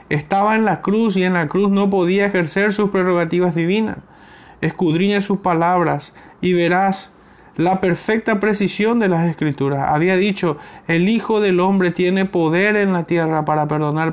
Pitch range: 160-190 Hz